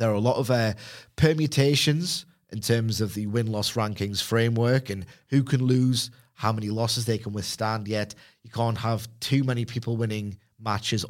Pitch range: 100-125 Hz